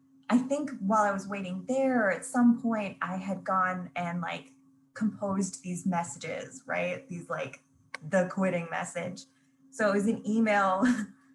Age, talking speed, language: 20-39, 155 wpm, English